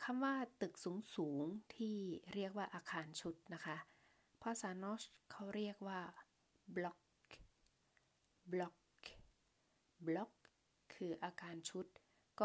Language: Thai